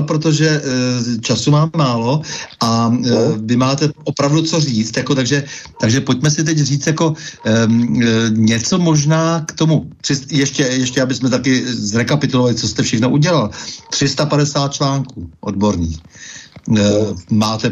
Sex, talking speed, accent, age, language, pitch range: male, 120 wpm, native, 60-79, Czech, 115-140 Hz